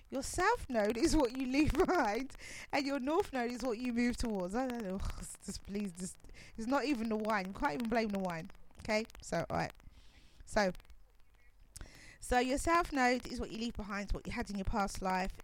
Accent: British